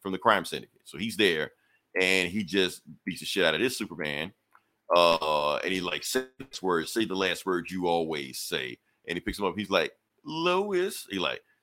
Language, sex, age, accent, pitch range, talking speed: English, male, 40-59, American, 90-120 Hz, 205 wpm